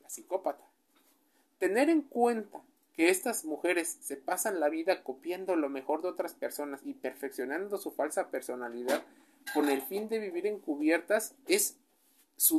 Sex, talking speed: male, 145 wpm